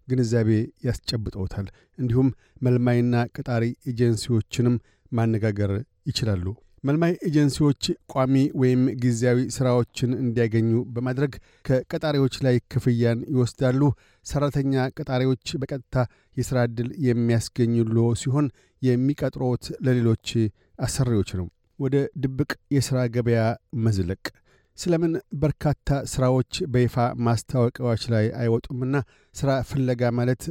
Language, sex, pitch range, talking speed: Amharic, male, 115-130 Hz, 90 wpm